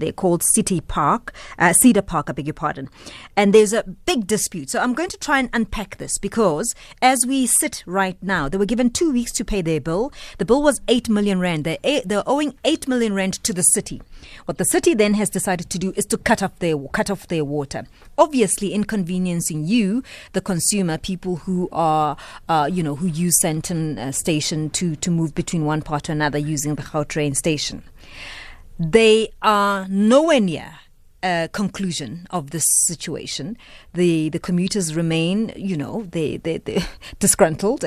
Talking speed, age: 190 wpm, 30-49